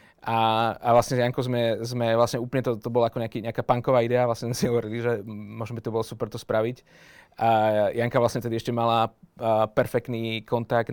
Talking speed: 190 wpm